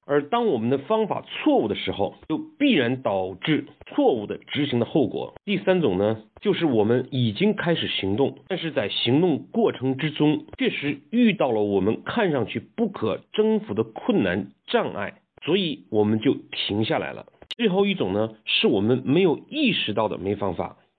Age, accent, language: 50-69, native, Chinese